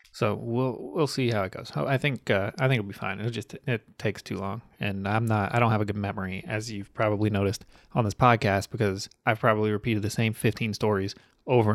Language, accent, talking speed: English, American, 235 wpm